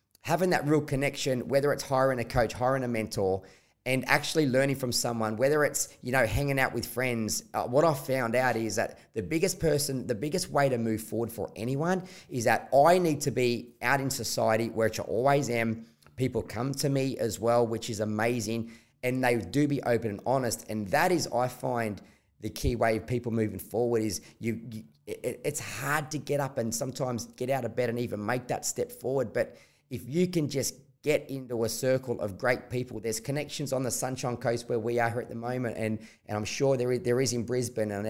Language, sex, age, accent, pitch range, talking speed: English, male, 20-39, Australian, 115-140 Hz, 220 wpm